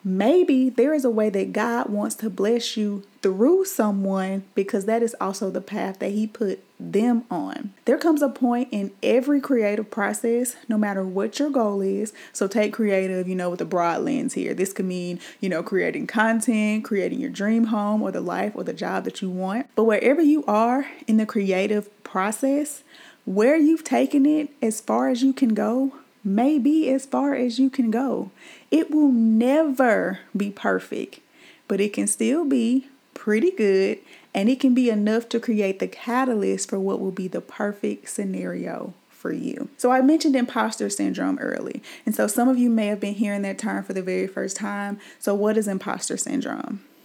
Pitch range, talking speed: 205-260 Hz, 190 wpm